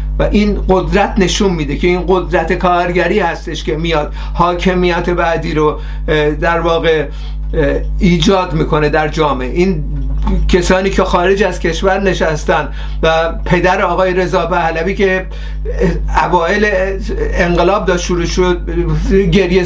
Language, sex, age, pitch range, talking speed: Persian, male, 50-69, 180-220 Hz, 120 wpm